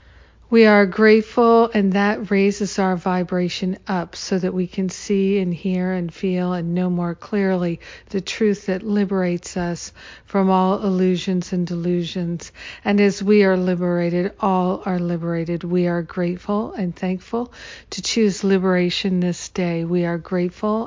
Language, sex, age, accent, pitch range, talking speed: English, female, 50-69, American, 175-200 Hz, 150 wpm